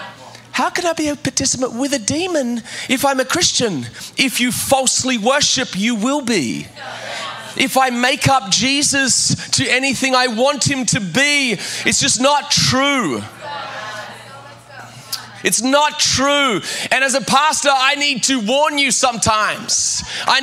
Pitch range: 255-290 Hz